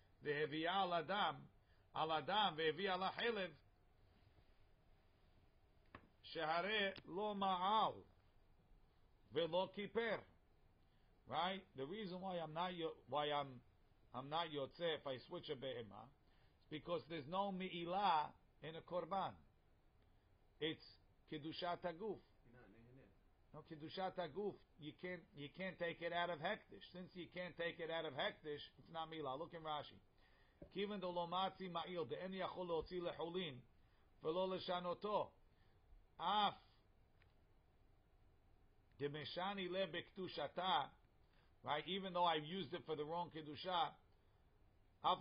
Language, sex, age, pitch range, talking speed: English, male, 50-69, 105-180 Hz, 120 wpm